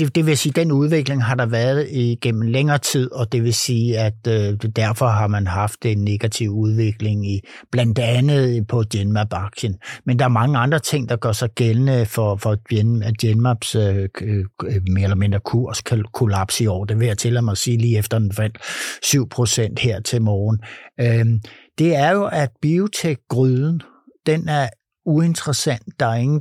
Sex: male